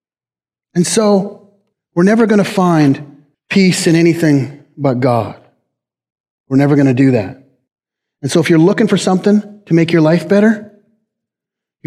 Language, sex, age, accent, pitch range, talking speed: English, male, 30-49, American, 130-160 Hz, 155 wpm